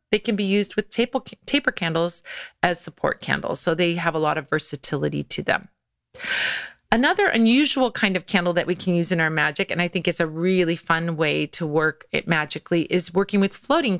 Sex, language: female, English